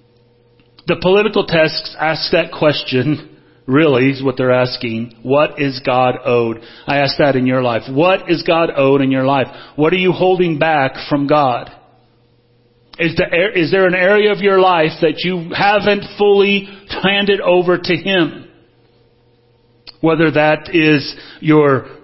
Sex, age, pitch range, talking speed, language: male, 40-59, 130-180 Hz, 145 wpm, English